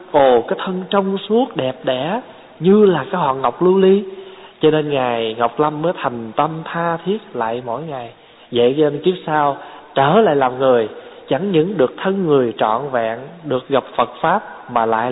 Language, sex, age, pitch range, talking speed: Vietnamese, male, 20-39, 120-170 Hz, 190 wpm